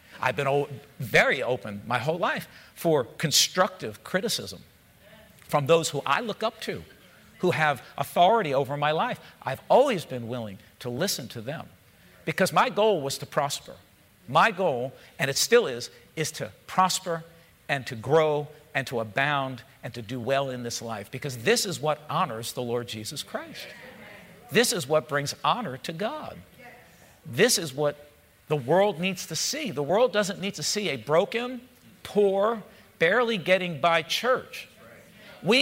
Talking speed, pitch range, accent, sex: 165 wpm, 140-215 Hz, American, male